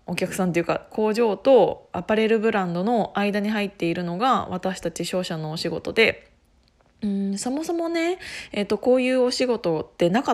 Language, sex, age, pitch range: Japanese, female, 20-39, 175-245 Hz